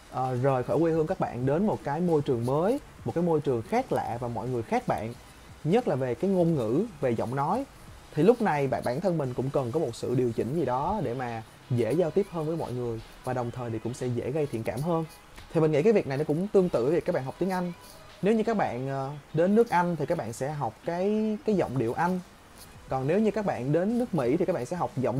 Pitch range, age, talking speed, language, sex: 125-180 Hz, 20-39, 280 wpm, Vietnamese, male